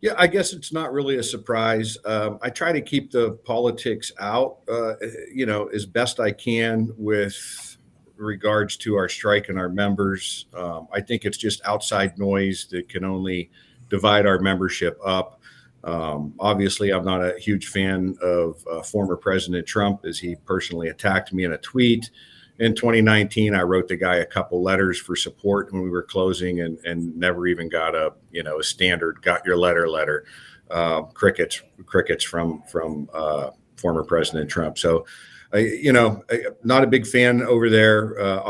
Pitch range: 90-110 Hz